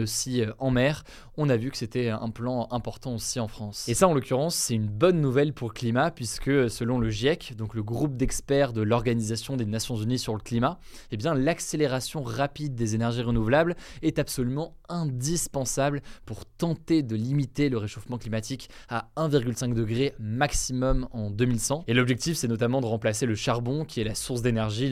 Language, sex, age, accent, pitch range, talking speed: French, male, 20-39, French, 115-140 Hz, 185 wpm